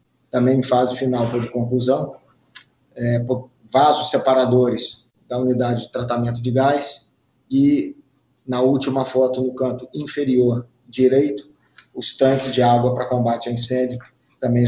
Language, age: Portuguese, 40-59